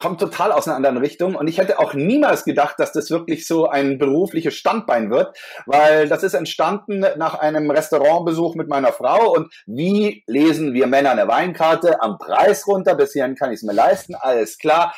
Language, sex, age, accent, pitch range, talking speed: German, male, 30-49, German, 130-165 Hz, 190 wpm